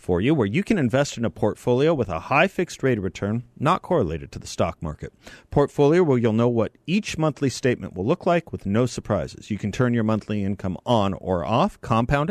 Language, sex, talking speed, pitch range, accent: English, male, 225 wpm, 110-160 Hz, American